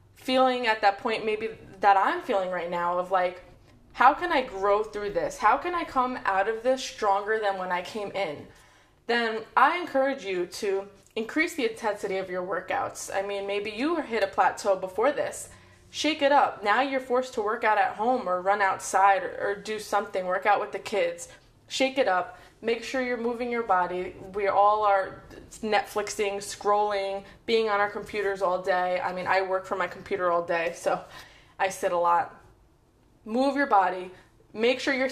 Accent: American